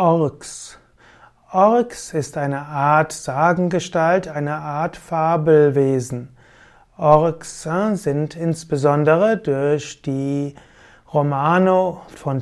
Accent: German